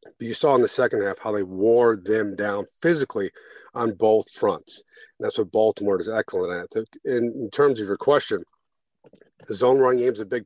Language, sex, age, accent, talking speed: English, male, 40-59, American, 205 wpm